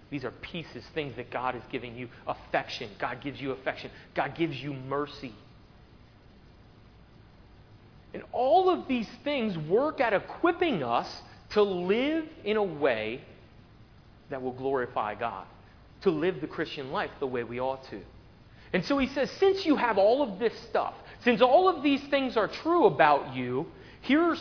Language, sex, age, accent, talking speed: English, male, 30-49, American, 165 wpm